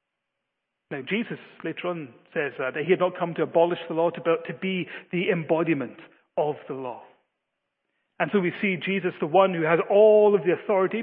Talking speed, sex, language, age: 195 wpm, male, English, 40-59